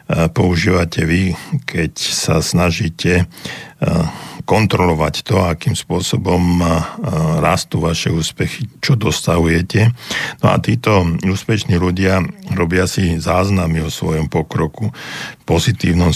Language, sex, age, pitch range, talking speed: Slovak, male, 60-79, 80-95 Hz, 95 wpm